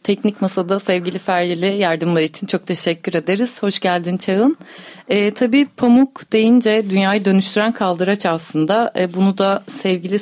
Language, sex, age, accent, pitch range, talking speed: Turkish, female, 40-59, native, 200-260 Hz, 140 wpm